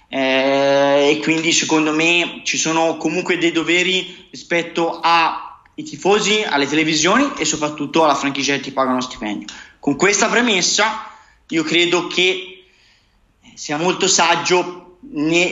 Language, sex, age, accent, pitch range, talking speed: Italian, male, 30-49, native, 150-185 Hz, 130 wpm